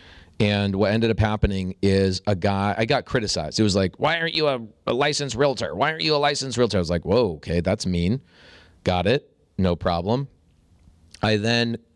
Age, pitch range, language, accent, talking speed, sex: 30-49, 85-110 Hz, English, American, 200 wpm, male